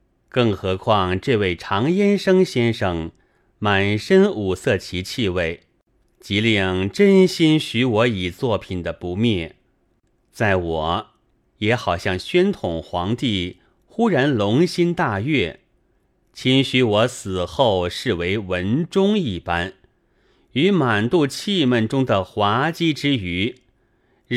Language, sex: Chinese, male